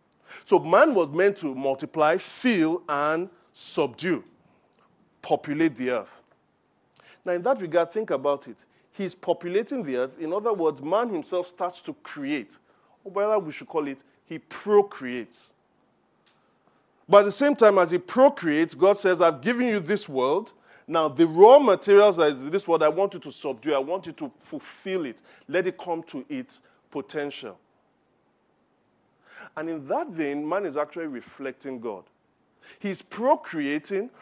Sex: male